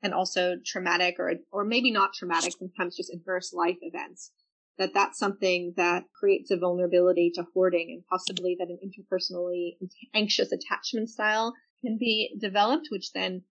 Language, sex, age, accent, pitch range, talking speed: English, female, 30-49, American, 180-225 Hz, 155 wpm